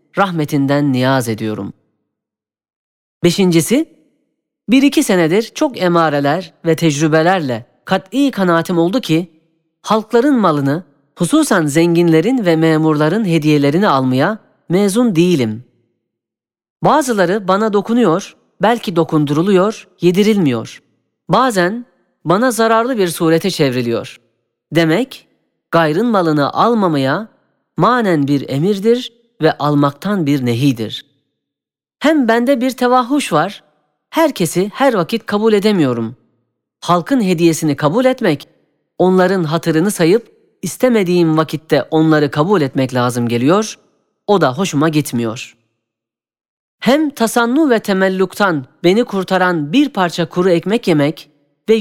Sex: female